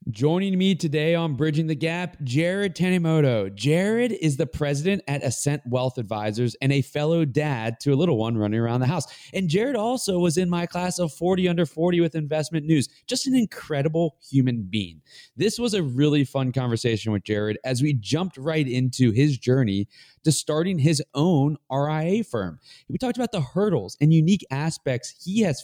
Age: 20-39